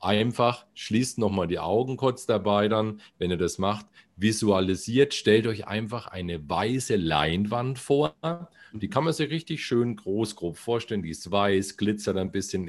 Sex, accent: male, German